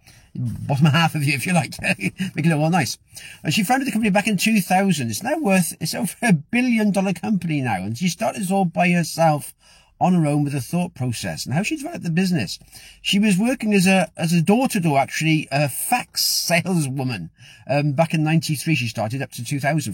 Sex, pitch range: male, 150-195 Hz